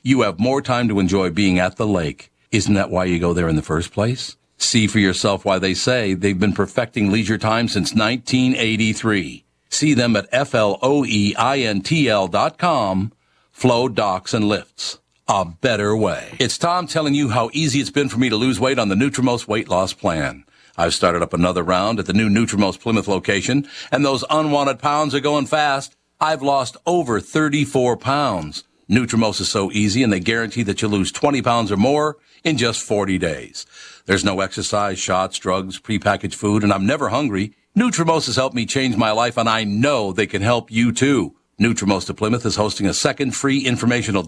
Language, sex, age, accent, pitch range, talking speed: English, male, 60-79, American, 100-130 Hz, 190 wpm